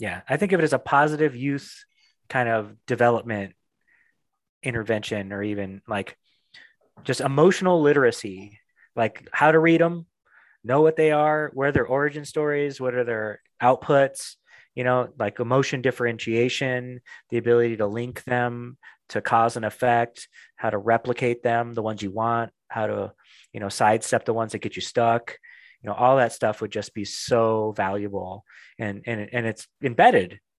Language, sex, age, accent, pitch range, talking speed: English, male, 30-49, American, 105-130 Hz, 165 wpm